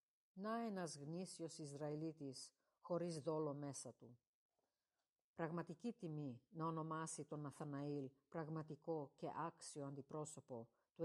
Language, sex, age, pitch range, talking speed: Greek, female, 50-69, 145-185 Hz, 105 wpm